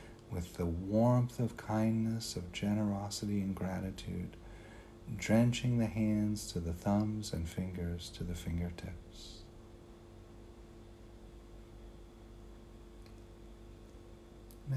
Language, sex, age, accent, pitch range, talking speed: English, male, 50-69, American, 95-115 Hz, 85 wpm